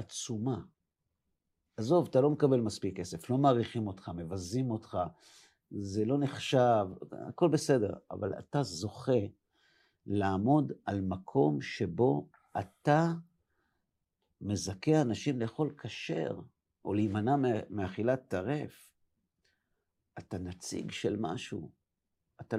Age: 50-69